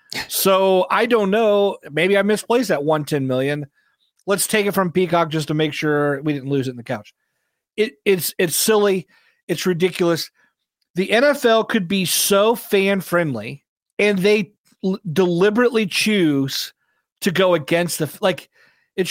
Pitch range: 155-205 Hz